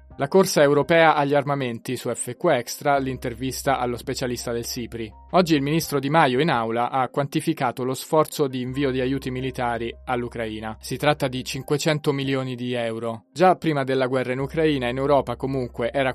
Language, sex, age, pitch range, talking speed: Italian, male, 20-39, 120-145 Hz, 175 wpm